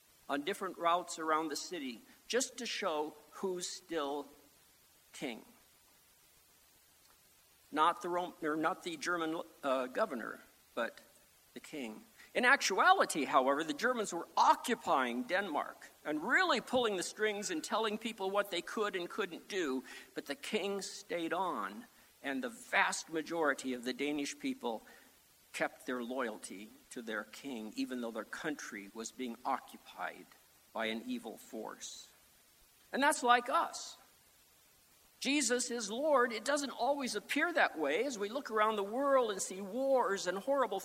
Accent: American